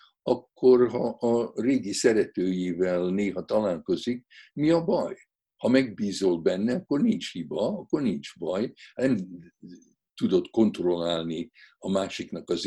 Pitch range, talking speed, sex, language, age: 95-140 Hz, 120 wpm, male, Hungarian, 60-79